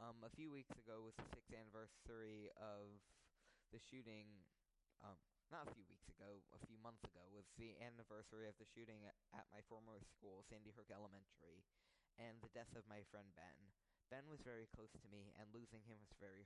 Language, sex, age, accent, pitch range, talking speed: English, male, 20-39, American, 100-120 Hz, 195 wpm